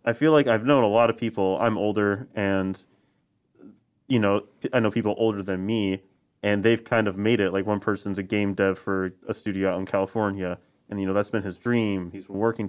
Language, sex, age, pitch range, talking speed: English, male, 30-49, 95-120 Hz, 220 wpm